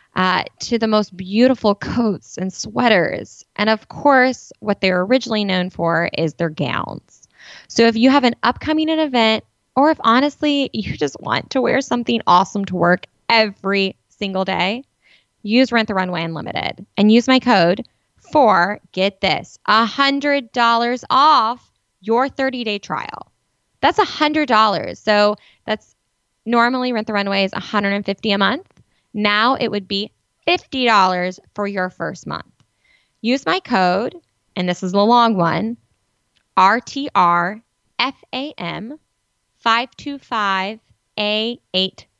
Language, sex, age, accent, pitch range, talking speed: English, female, 20-39, American, 190-255 Hz, 130 wpm